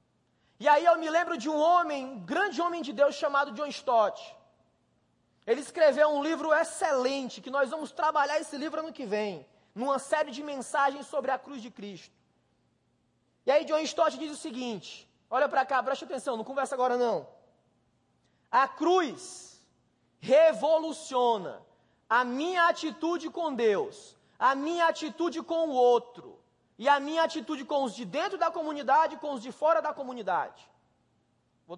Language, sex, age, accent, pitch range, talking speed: Portuguese, male, 20-39, Brazilian, 270-330 Hz, 165 wpm